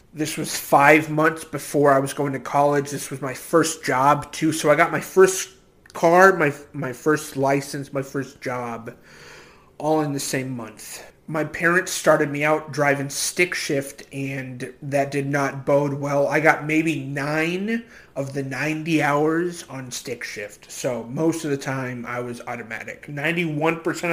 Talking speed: 170 wpm